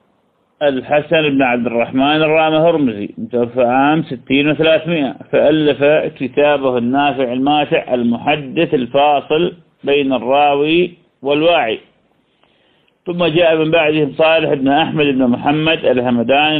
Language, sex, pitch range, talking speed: Malay, male, 130-160 Hz, 105 wpm